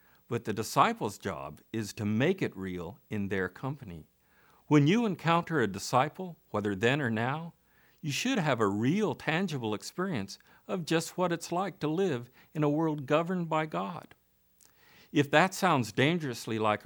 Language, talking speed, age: English, 165 wpm, 50-69